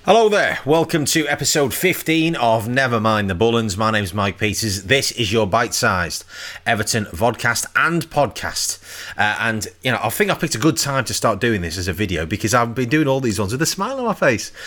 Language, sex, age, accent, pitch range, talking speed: English, male, 30-49, British, 100-130 Hz, 220 wpm